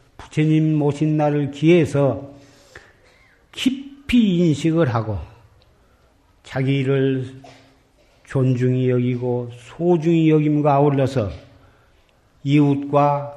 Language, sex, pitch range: Korean, male, 125-155 Hz